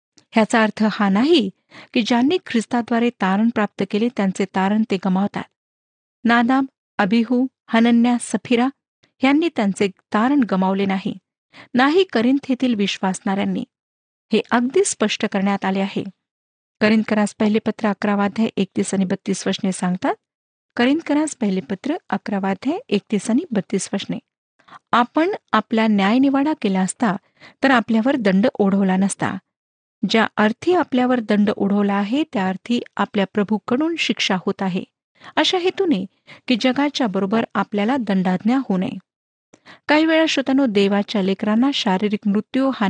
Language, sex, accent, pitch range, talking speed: Marathi, female, native, 195-255 Hz, 125 wpm